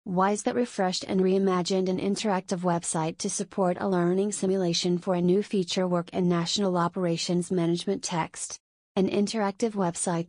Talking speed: 150 wpm